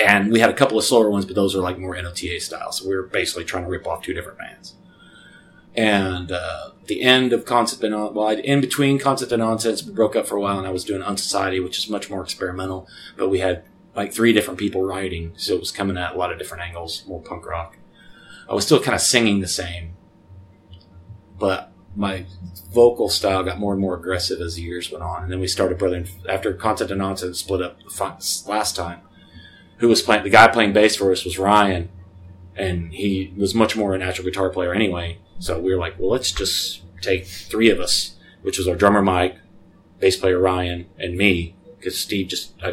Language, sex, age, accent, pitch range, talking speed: English, male, 30-49, American, 90-100 Hz, 220 wpm